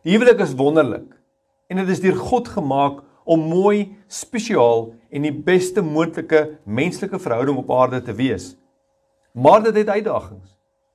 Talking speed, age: 140 wpm, 50-69